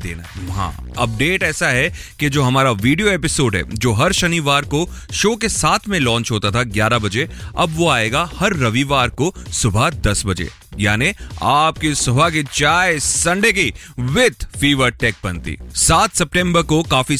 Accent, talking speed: native, 165 wpm